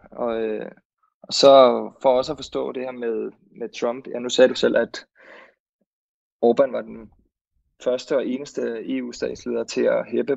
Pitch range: 115-130 Hz